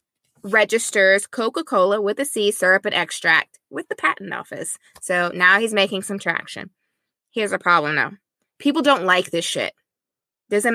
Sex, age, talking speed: female, 20-39, 160 wpm